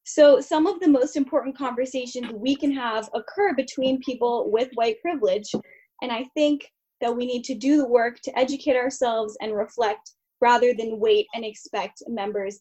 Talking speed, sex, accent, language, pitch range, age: 175 wpm, female, American, English, 220-285 Hz, 10-29